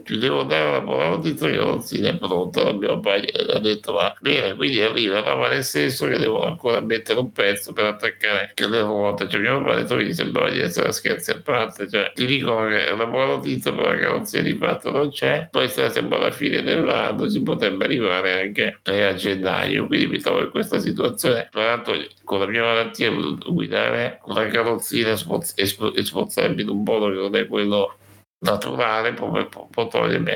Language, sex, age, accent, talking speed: Italian, male, 60-79, native, 215 wpm